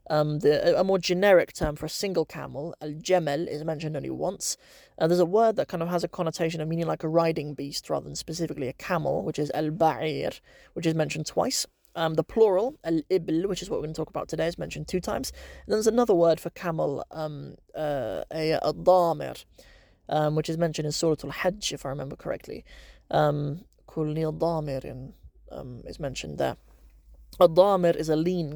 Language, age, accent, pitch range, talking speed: English, 20-39, British, 145-170 Hz, 185 wpm